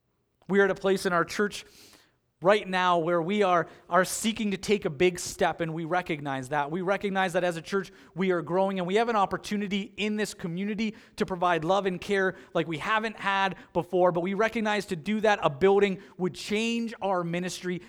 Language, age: English, 30-49